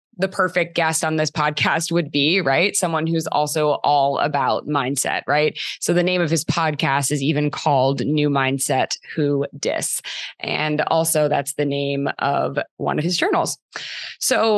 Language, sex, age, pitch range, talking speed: English, female, 20-39, 150-180 Hz, 165 wpm